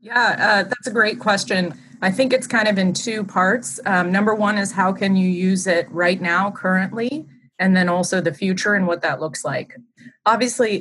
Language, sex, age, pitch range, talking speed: English, female, 30-49, 165-195 Hz, 205 wpm